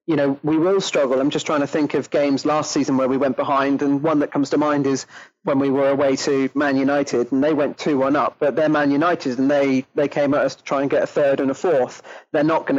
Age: 30-49